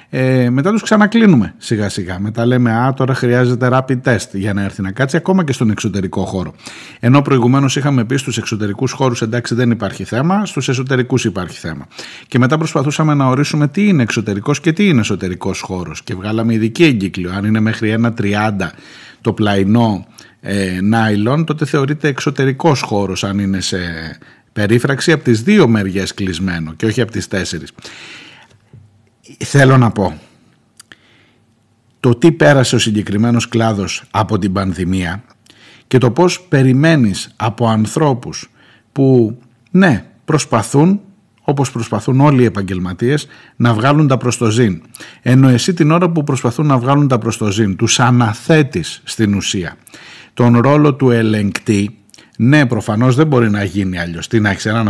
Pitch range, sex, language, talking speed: 105-135 Hz, male, Greek, 155 wpm